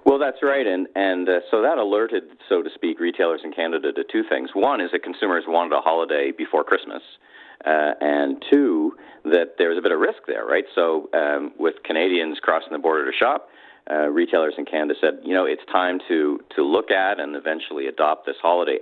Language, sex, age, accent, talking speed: English, male, 40-59, American, 210 wpm